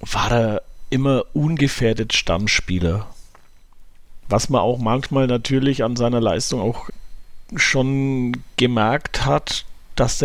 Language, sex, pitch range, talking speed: German, male, 105-135 Hz, 110 wpm